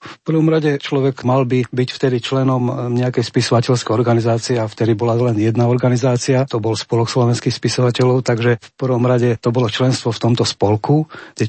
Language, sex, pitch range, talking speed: Slovak, male, 110-130 Hz, 180 wpm